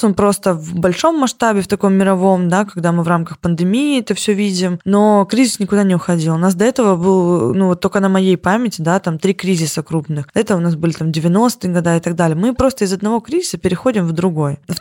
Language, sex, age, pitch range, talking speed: Russian, female, 20-39, 175-210 Hz, 230 wpm